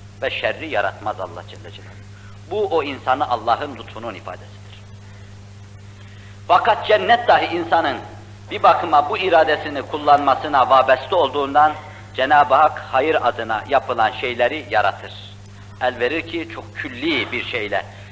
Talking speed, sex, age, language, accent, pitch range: 120 wpm, male, 60-79, Turkish, native, 100-130 Hz